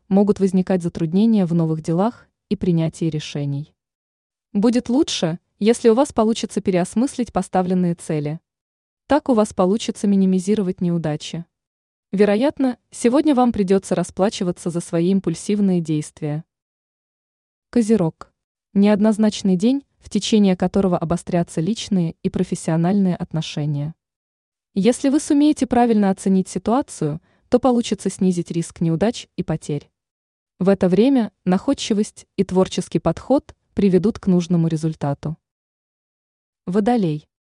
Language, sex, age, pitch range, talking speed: Russian, female, 20-39, 170-220 Hz, 110 wpm